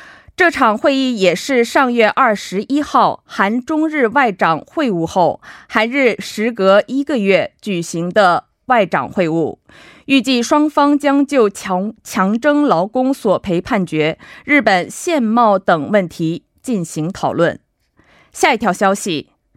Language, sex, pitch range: Korean, female, 185-275 Hz